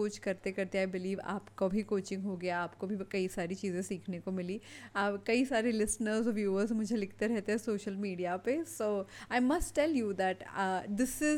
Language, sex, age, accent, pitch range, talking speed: English, female, 30-49, Indian, 200-250 Hz, 80 wpm